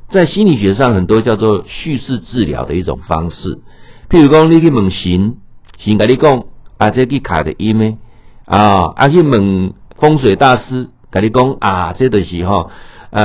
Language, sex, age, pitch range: Chinese, male, 60-79, 100-130 Hz